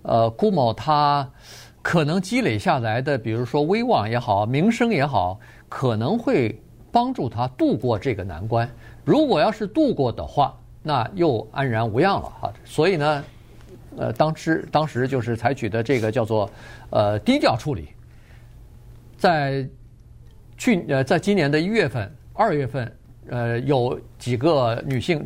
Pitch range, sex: 110-145 Hz, male